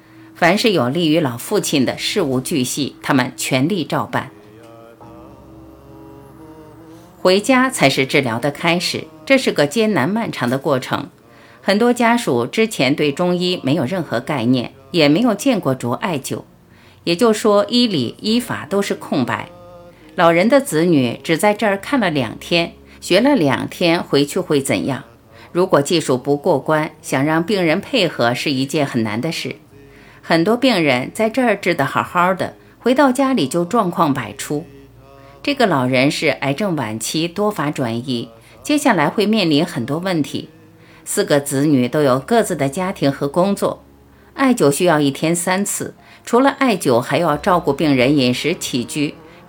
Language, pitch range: Chinese, 130-190 Hz